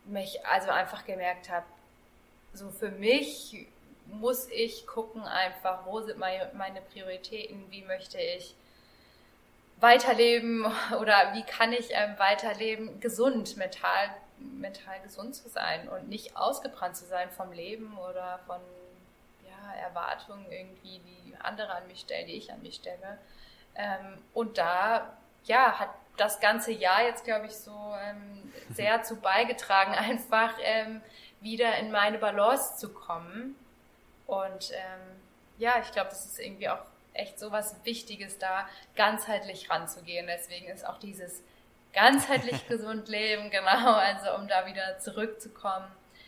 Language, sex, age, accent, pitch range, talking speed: German, female, 20-39, German, 190-230 Hz, 135 wpm